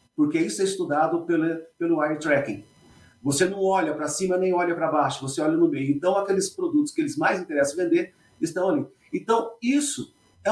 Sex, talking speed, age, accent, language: male, 190 wpm, 40-59, Brazilian, Portuguese